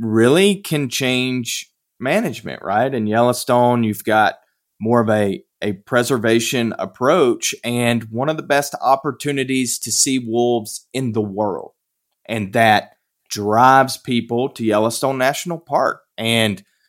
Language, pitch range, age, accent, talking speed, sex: English, 115-140 Hz, 30-49, American, 130 wpm, male